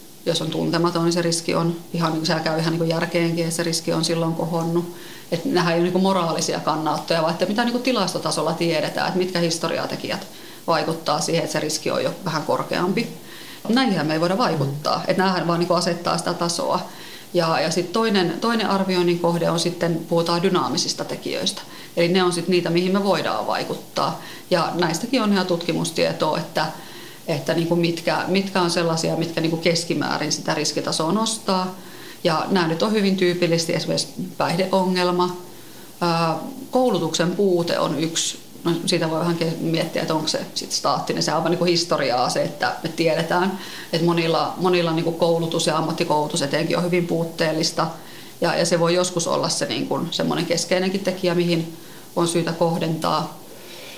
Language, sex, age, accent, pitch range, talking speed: Finnish, female, 30-49, native, 165-180 Hz, 170 wpm